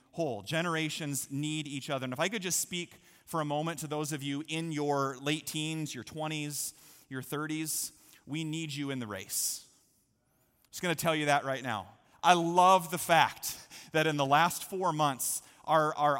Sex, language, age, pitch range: male, English, 30-49, 145-185 Hz